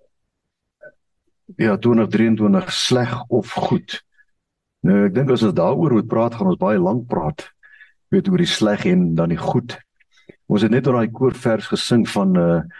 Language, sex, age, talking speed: English, male, 60-79, 170 wpm